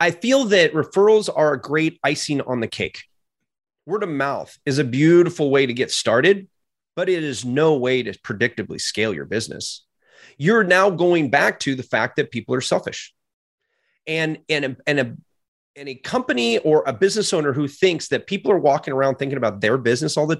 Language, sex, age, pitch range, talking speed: English, male, 30-49, 135-180 Hz, 185 wpm